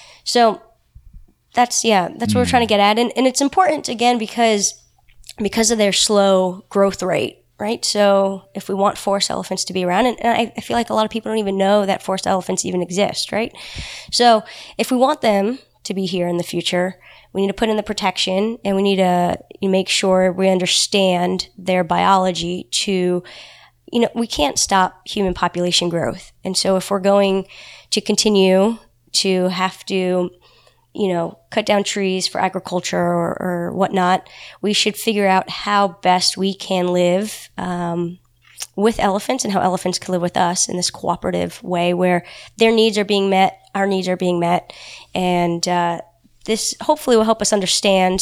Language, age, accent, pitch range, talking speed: English, 20-39, American, 180-210 Hz, 185 wpm